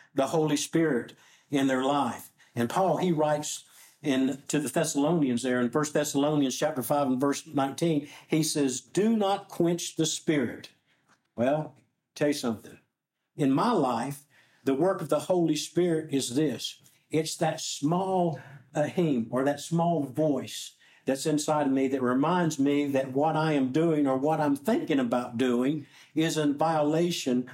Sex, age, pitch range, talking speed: male, 60-79, 140-170 Hz, 160 wpm